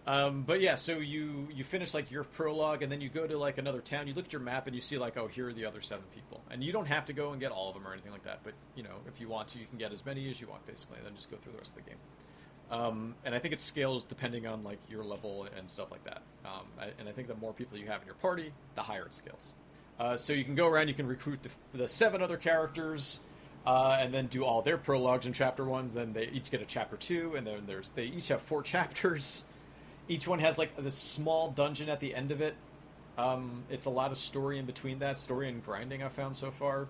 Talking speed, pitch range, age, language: 280 wpm, 115-145 Hz, 30-49, English